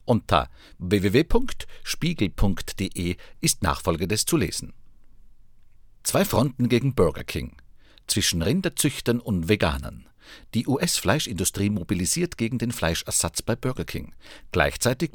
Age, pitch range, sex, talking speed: 50-69, 90-125 Hz, male, 105 wpm